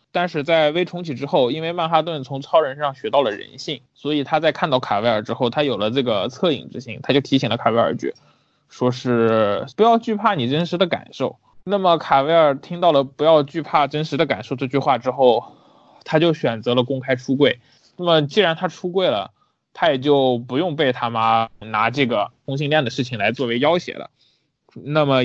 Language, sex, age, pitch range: Chinese, male, 20-39, 120-155 Hz